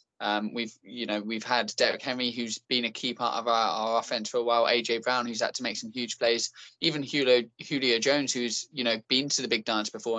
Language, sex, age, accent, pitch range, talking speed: English, male, 10-29, British, 110-125 Hz, 245 wpm